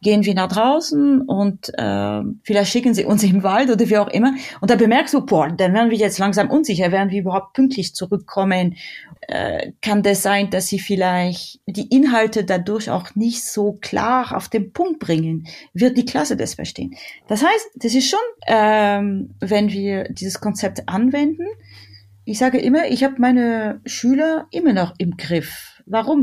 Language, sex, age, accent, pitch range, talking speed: German, female, 30-49, German, 190-250 Hz, 180 wpm